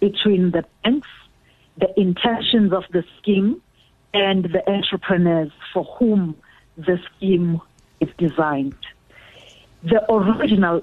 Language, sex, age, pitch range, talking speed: English, female, 50-69, 170-205 Hz, 105 wpm